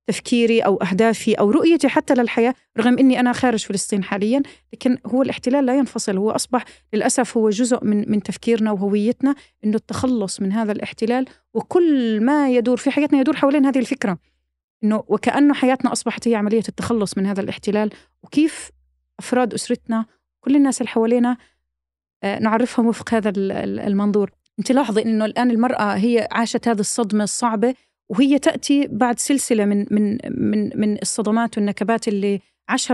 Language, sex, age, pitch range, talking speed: Arabic, female, 30-49, 210-255 Hz, 150 wpm